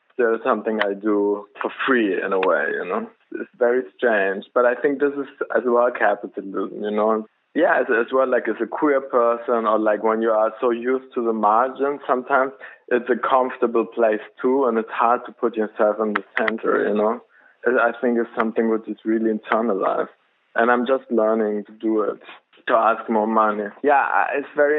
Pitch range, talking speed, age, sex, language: 110-125 Hz, 200 wpm, 20-39, male, English